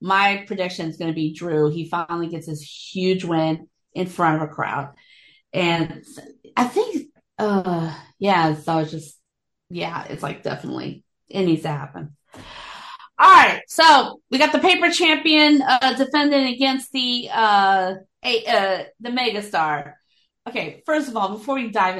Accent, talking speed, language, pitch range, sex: American, 155 wpm, English, 195-285 Hz, female